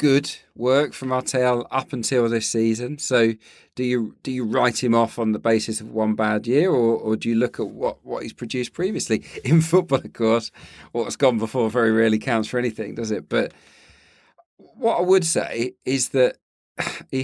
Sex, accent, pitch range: male, British, 115-140 Hz